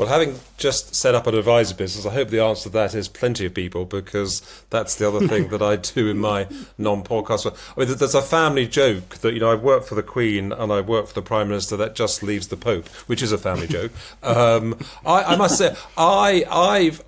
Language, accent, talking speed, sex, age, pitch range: English, British, 235 wpm, male, 40-59, 100-120 Hz